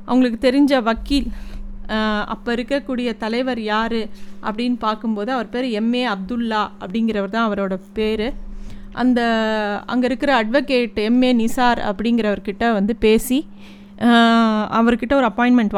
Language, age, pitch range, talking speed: Tamil, 30-49, 210-255 Hz, 110 wpm